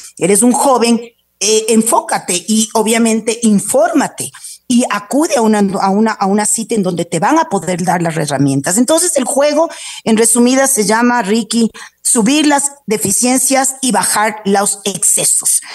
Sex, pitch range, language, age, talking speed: female, 190-245 Hz, Spanish, 40-59, 145 wpm